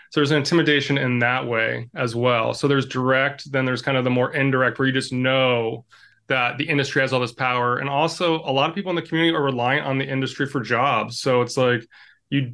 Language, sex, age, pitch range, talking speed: English, male, 20-39, 120-145 Hz, 235 wpm